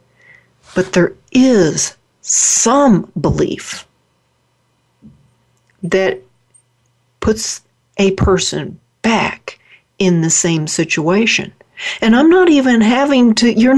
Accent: American